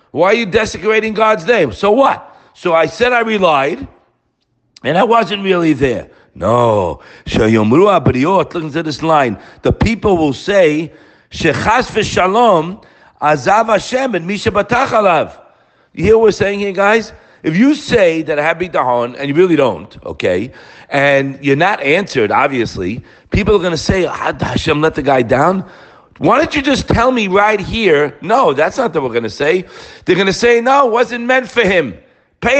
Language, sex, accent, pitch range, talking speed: English, male, American, 165-240 Hz, 170 wpm